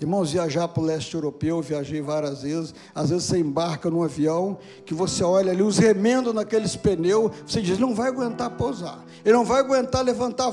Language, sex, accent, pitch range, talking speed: Portuguese, male, Brazilian, 165-245 Hz, 200 wpm